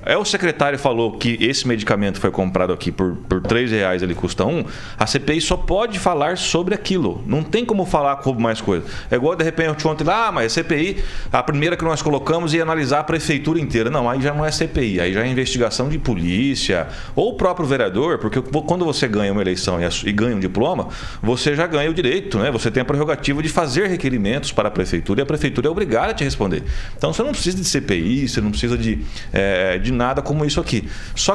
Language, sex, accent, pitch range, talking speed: Portuguese, male, Brazilian, 115-165 Hz, 230 wpm